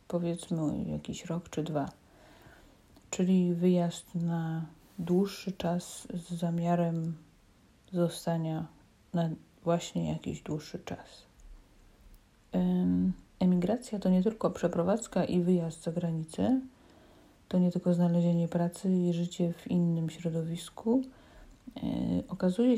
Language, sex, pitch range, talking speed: Polish, female, 165-195 Hz, 100 wpm